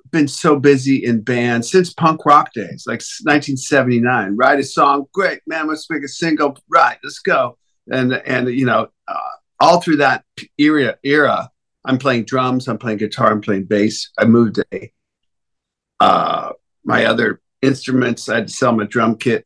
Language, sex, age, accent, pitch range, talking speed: English, male, 50-69, American, 115-140 Hz, 175 wpm